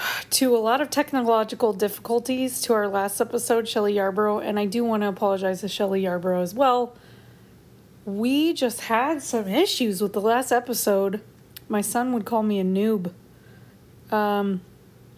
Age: 30-49